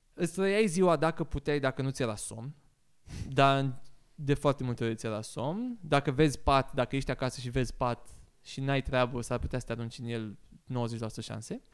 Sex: male